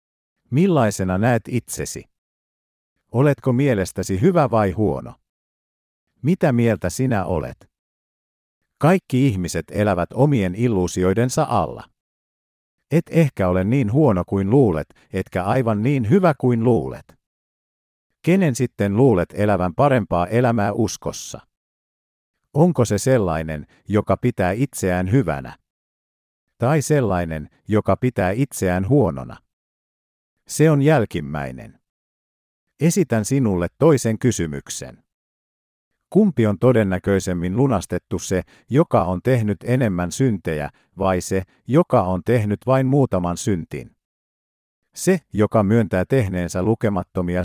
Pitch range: 90-130 Hz